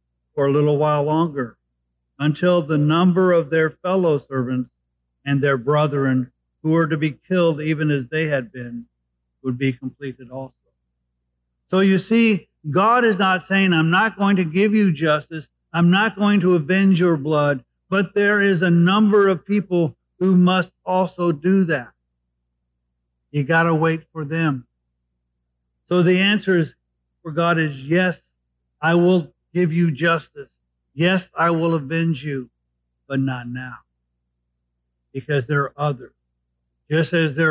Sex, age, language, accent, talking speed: male, 50-69, English, American, 150 wpm